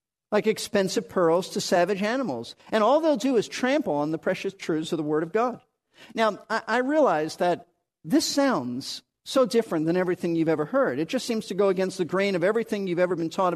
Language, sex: English, male